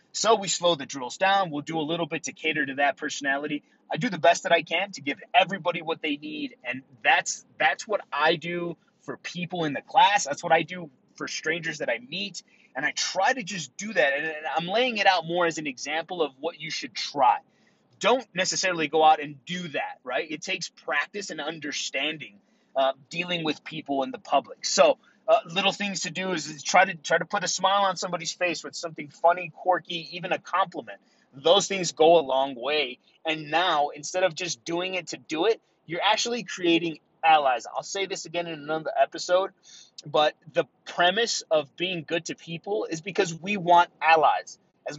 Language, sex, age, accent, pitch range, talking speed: English, male, 30-49, American, 155-190 Hz, 205 wpm